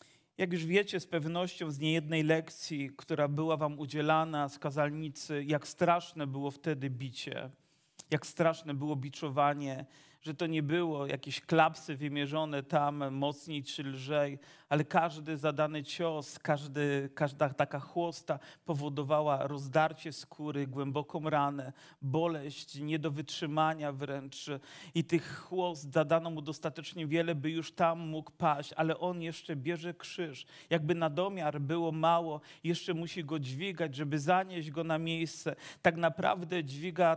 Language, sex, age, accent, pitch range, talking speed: Polish, male, 40-59, native, 150-170 Hz, 135 wpm